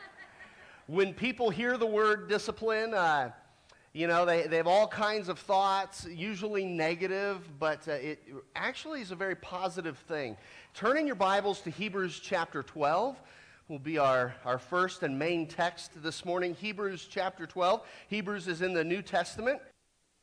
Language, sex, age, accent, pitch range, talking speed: English, male, 40-59, American, 145-185 Hz, 155 wpm